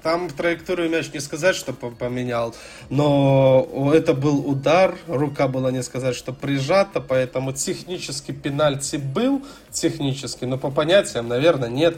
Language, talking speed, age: Russian, 135 wpm, 20-39